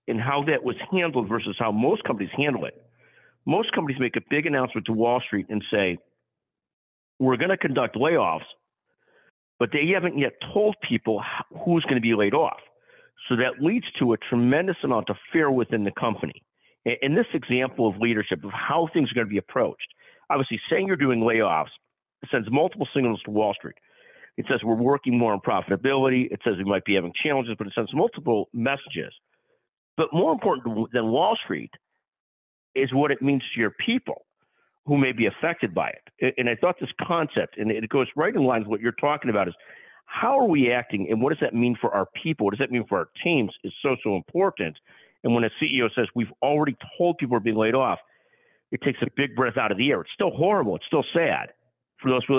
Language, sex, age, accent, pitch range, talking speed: English, male, 50-69, American, 110-145 Hz, 210 wpm